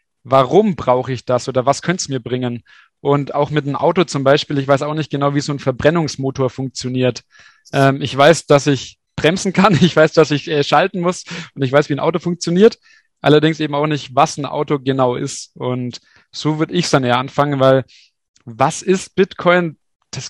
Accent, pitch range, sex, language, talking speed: German, 135-160 Hz, male, German, 205 wpm